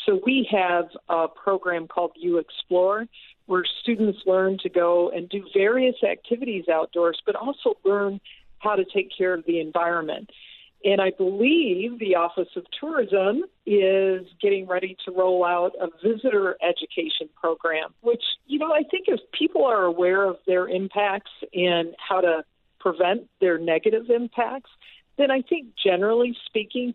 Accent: American